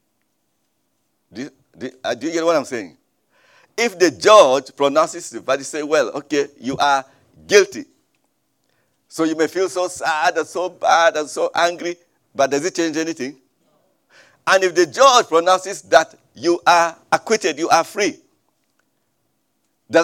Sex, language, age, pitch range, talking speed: male, English, 50-69, 155-220 Hz, 160 wpm